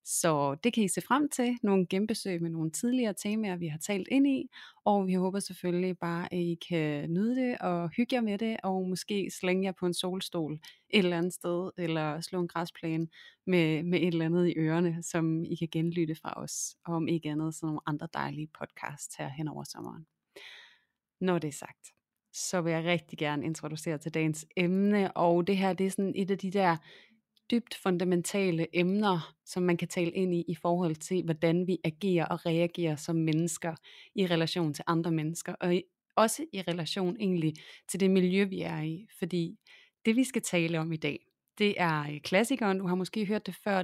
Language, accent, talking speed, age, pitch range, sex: Danish, native, 205 wpm, 30-49, 165-195 Hz, female